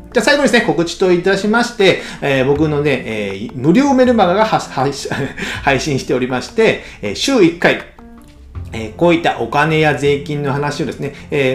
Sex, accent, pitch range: male, native, 140-225 Hz